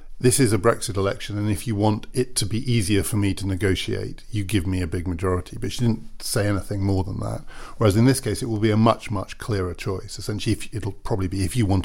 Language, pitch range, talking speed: English, 95-120 Hz, 255 wpm